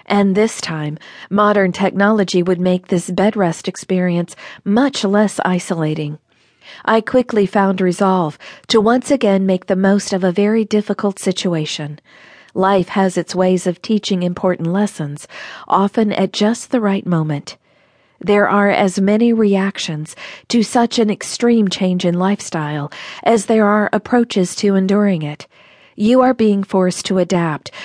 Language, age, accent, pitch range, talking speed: English, 50-69, American, 175-215 Hz, 145 wpm